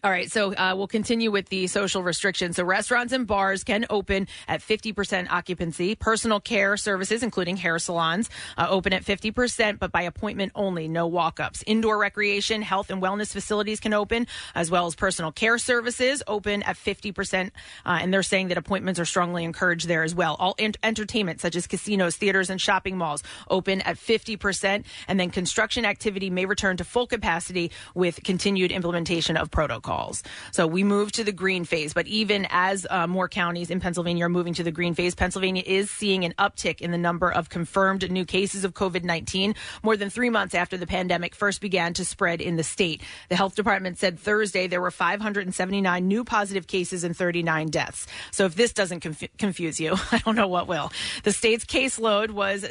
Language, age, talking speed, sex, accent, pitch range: English, 30-49, 190 wpm, female, American, 180-205 Hz